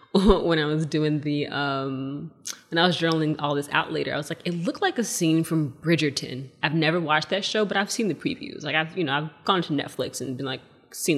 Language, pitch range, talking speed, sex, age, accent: English, 145-175 Hz, 245 wpm, female, 20-39, American